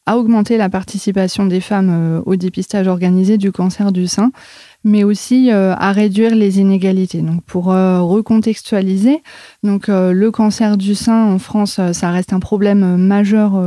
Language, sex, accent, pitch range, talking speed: French, female, French, 180-210 Hz, 150 wpm